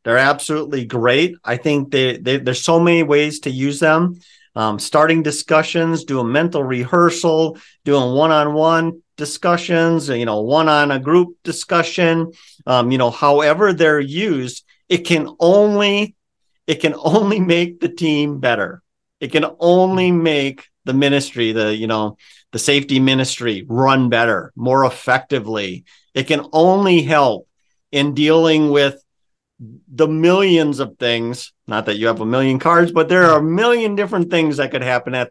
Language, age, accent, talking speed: English, 50-69, American, 155 wpm